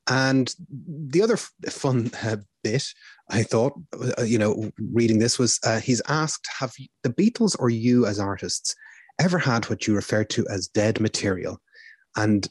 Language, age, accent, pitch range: English, 30-49, Irish, 105-135 Hz